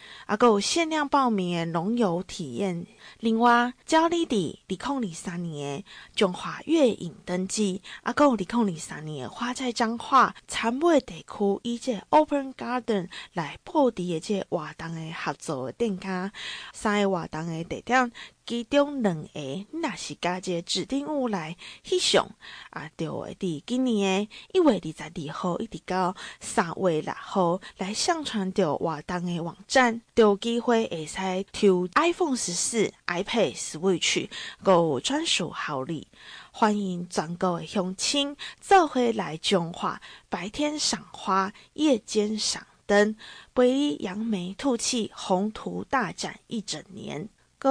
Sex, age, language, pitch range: female, 20-39, Chinese, 180-245 Hz